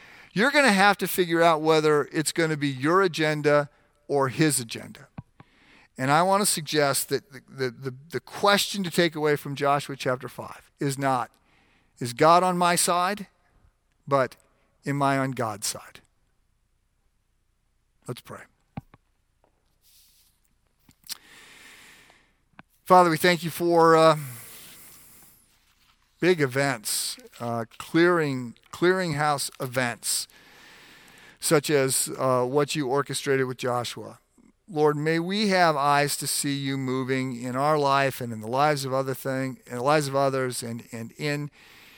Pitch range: 125-160 Hz